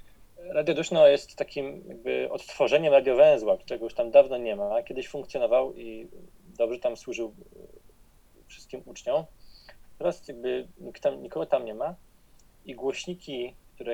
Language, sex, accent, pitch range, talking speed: Polish, male, native, 120-195 Hz, 130 wpm